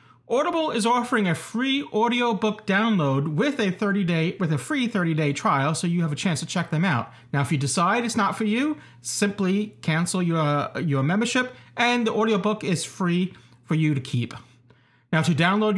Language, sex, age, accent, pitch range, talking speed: English, male, 40-59, American, 150-220 Hz, 195 wpm